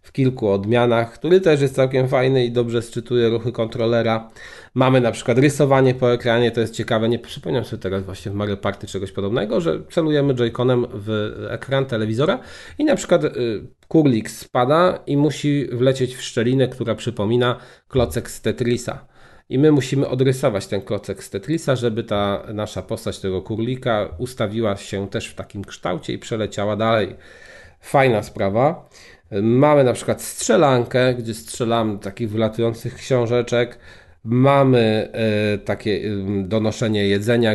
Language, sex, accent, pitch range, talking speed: Polish, male, native, 100-120 Hz, 150 wpm